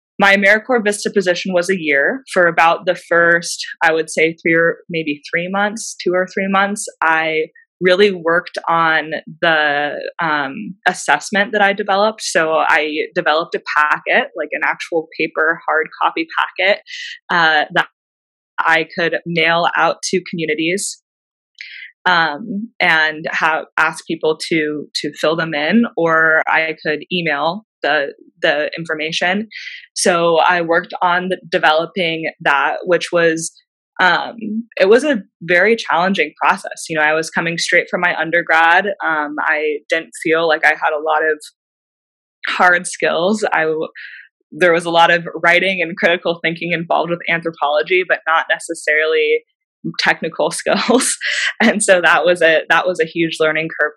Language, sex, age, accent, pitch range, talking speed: English, female, 20-39, American, 160-195 Hz, 150 wpm